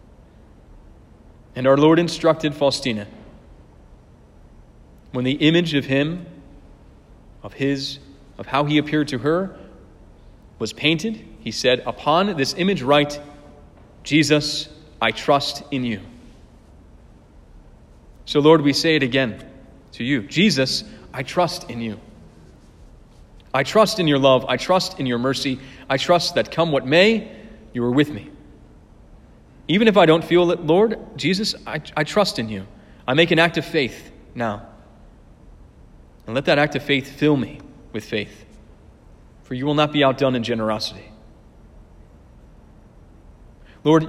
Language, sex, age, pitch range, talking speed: English, male, 30-49, 115-155 Hz, 140 wpm